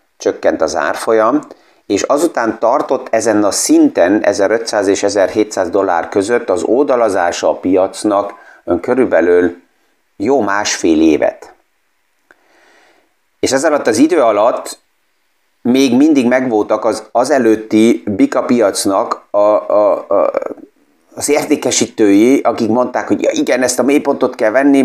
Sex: male